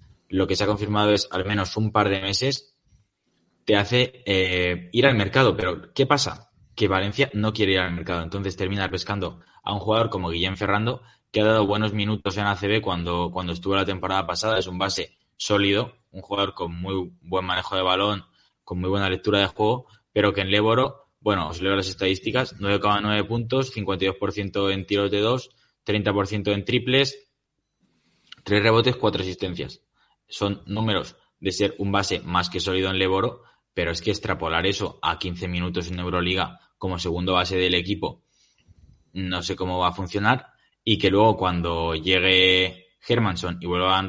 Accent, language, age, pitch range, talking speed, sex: Spanish, Spanish, 20-39, 90-105 Hz, 180 wpm, male